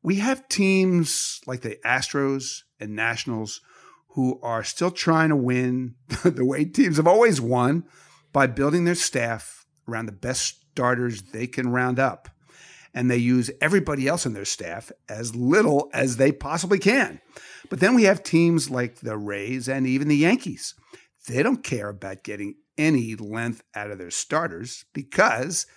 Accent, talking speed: American, 165 wpm